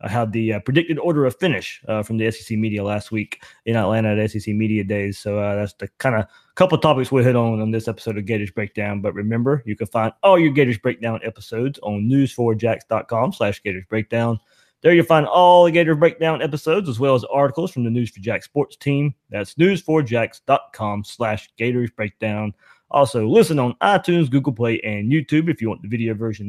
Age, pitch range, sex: 20-39, 110-140 Hz, male